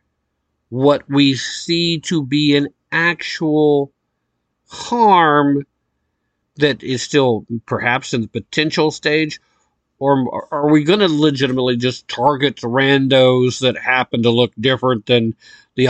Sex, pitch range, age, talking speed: male, 125-185 Hz, 50-69, 120 wpm